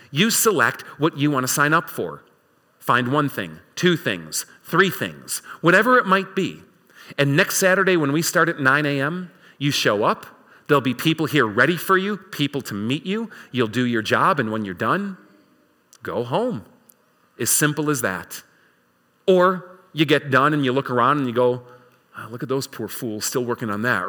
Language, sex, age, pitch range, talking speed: English, male, 40-59, 120-160 Hz, 190 wpm